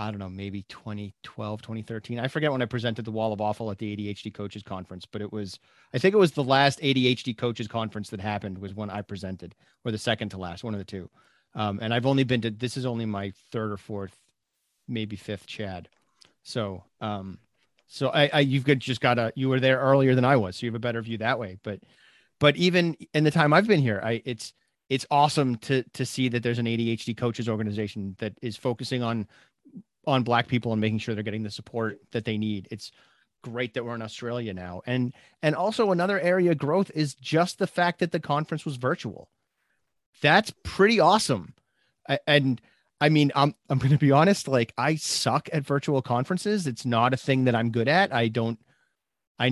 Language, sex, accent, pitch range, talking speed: English, male, American, 110-145 Hz, 215 wpm